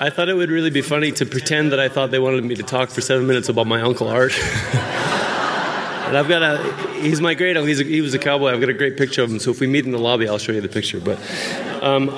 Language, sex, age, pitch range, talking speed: English, male, 20-39, 115-140 Hz, 280 wpm